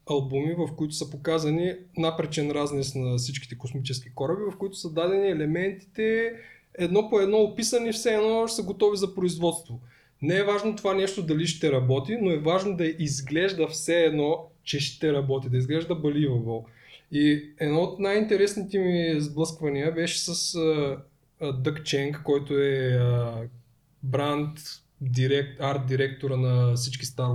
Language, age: Bulgarian, 20-39